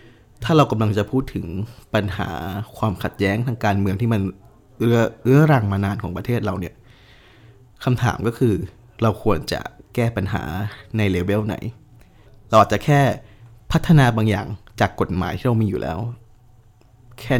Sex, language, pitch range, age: male, Thai, 100-120 Hz, 20-39